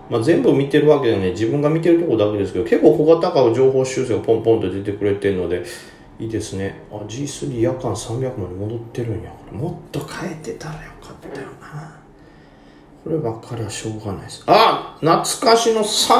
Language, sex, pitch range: Japanese, male, 105-155 Hz